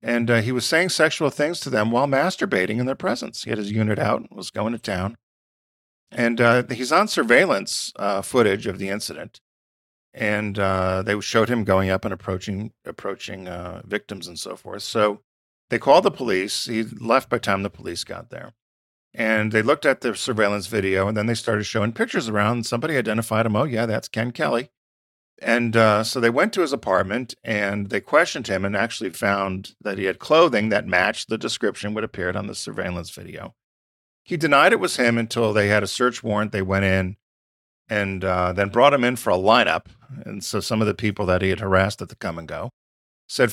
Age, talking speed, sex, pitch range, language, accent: 40-59, 210 wpm, male, 95-120 Hz, English, American